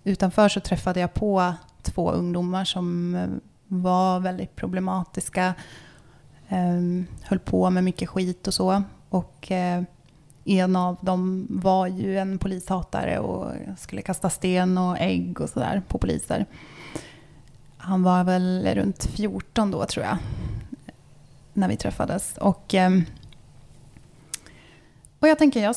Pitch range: 175-210 Hz